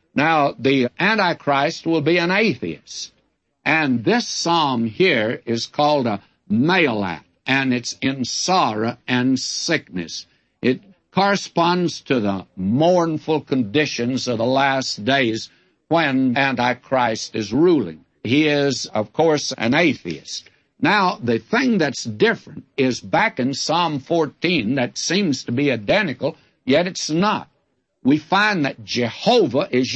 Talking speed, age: 130 wpm, 60-79